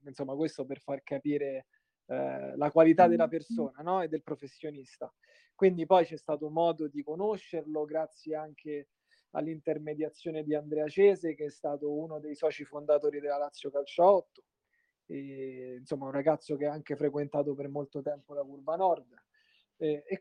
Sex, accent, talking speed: male, native, 165 wpm